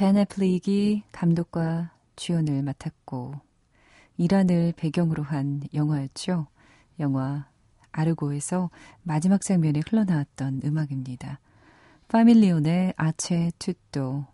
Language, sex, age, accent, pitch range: Korean, female, 40-59, native, 135-185 Hz